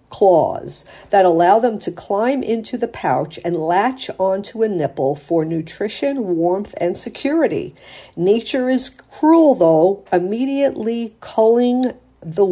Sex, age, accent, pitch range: female, 50-69, American, 180-255 Hz